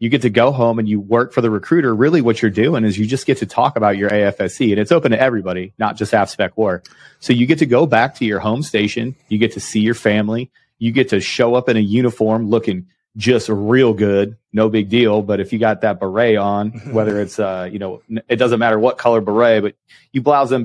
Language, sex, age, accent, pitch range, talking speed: English, male, 30-49, American, 105-120 Hz, 255 wpm